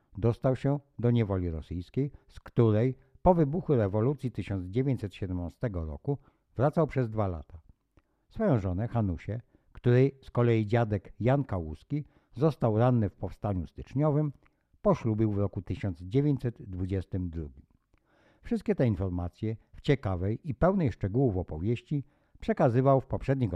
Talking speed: 115 wpm